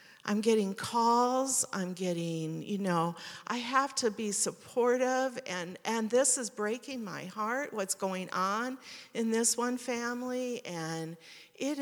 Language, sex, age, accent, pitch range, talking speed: English, female, 50-69, American, 180-230 Hz, 140 wpm